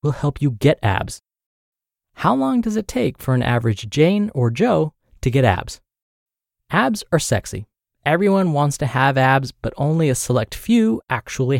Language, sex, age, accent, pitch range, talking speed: English, male, 20-39, American, 120-185 Hz, 165 wpm